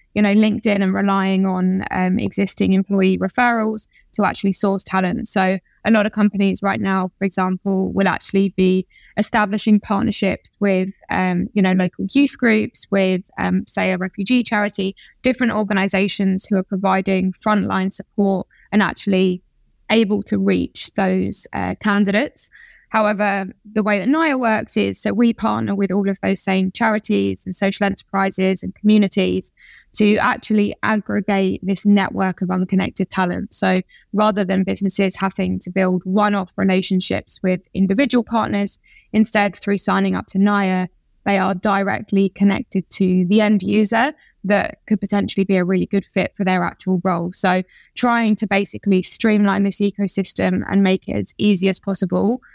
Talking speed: 155 wpm